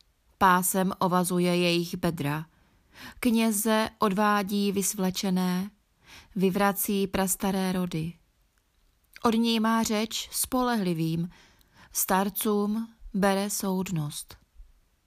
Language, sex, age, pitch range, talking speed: Czech, female, 30-49, 170-205 Hz, 70 wpm